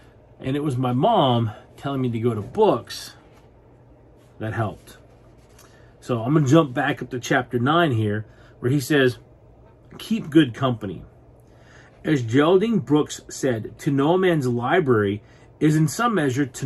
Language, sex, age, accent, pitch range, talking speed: English, male, 40-59, American, 115-155 Hz, 155 wpm